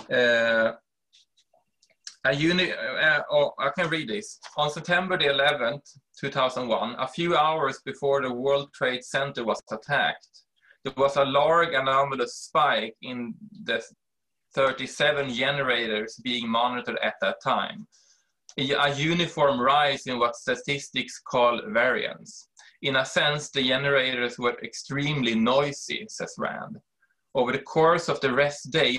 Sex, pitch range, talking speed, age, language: male, 120-145 Hz, 130 wpm, 20-39, English